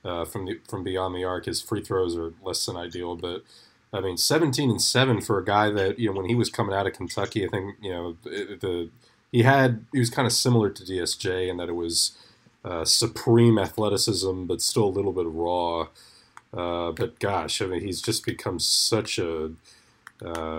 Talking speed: 210 wpm